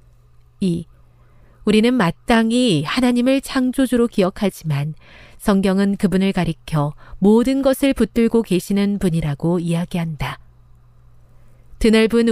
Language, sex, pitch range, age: Korean, female, 150-230 Hz, 40-59